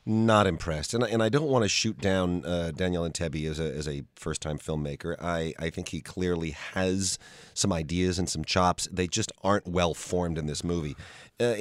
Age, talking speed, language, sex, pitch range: 30-49, 200 wpm, English, male, 85-105 Hz